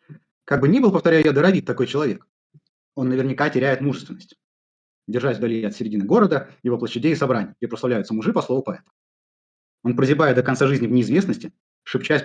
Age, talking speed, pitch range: 30-49, 170 wpm, 125-185 Hz